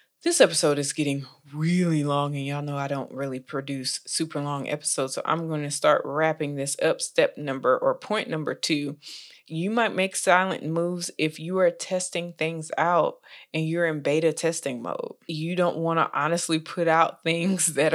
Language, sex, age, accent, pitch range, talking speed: English, female, 20-39, American, 145-175 Hz, 185 wpm